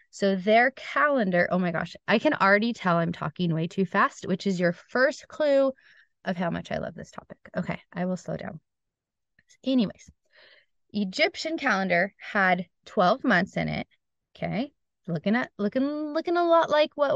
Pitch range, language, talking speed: 195-260 Hz, English, 170 wpm